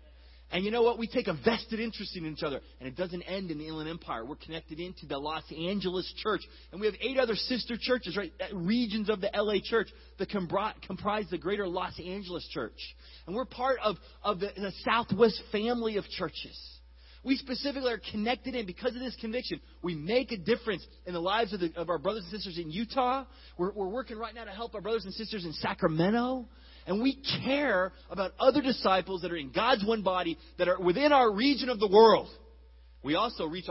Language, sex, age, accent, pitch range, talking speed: English, male, 30-49, American, 155-225 Hz, 210 wpm